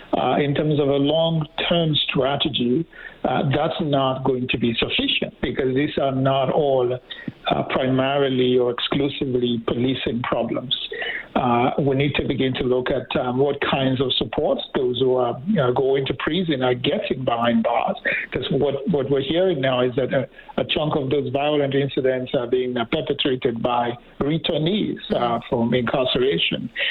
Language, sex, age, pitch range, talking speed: English, male, 60-79, 130-155 Hz, 165 wpm